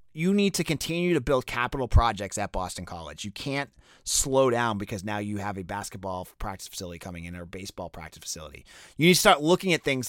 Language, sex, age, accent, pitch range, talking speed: English, male, 30-49, American, 110-155 Hz, 215 wpm